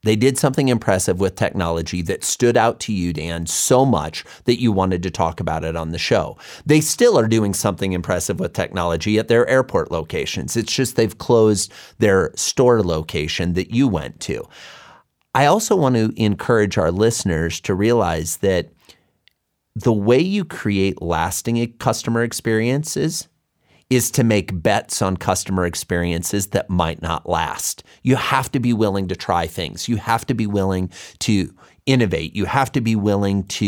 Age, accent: 30-49, American